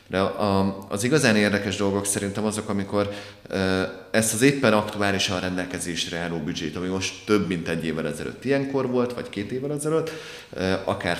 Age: 30-49